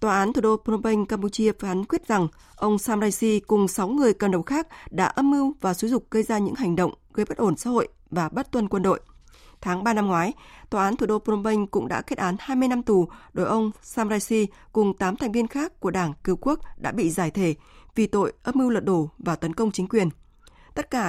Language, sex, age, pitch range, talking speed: Vietnamese, female, 20-39, 185-225 Hz, 250 wpm